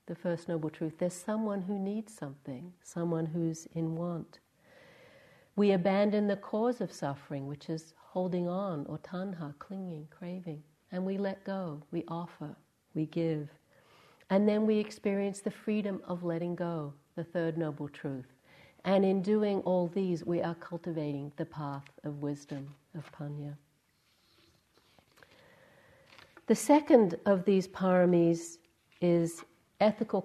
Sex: female